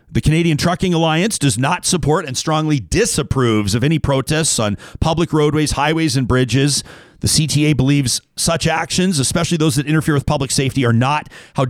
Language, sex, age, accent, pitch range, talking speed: English, male, 40-59, American, 130-165 Hz, 175 wpm